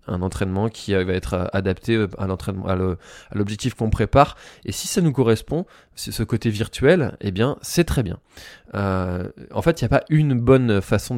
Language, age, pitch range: French, 20-39, 95-120 Hz